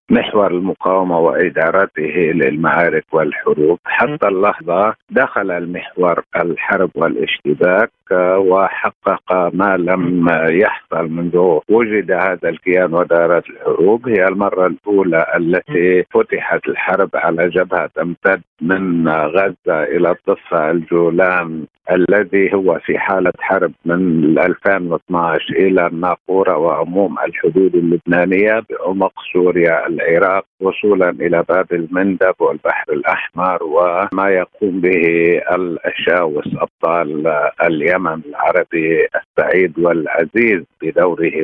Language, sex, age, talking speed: Arabic, male, 50-69, 95 wpm